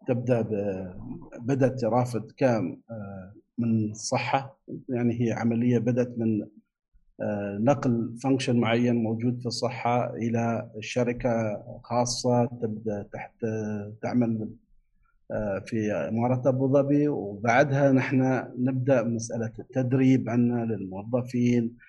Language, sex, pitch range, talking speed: Arabic, male, 110-125 Hz, 95 wpm